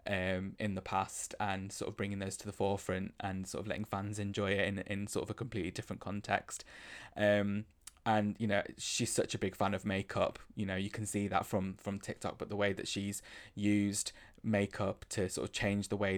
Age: 20-39